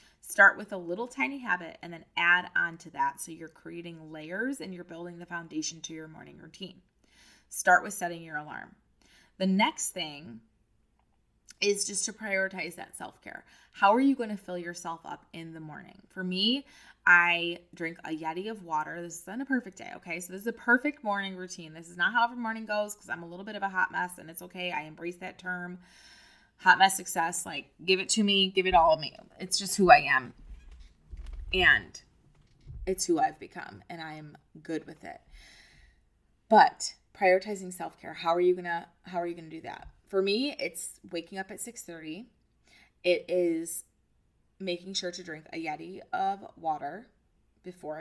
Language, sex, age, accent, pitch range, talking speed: English, female, 20-39, American, 165-205 Hz, 195 wpm